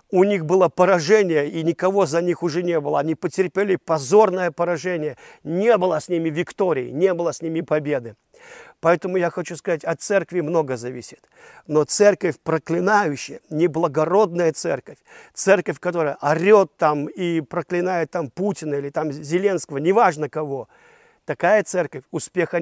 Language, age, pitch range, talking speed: Russian, 50-69, 150-180 Hz, 145 wpm